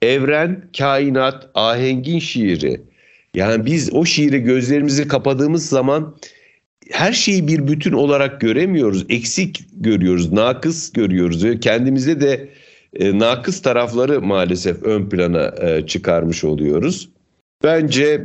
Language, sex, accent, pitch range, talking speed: Turkish, male, native, 100-135 Hz, 100 wpm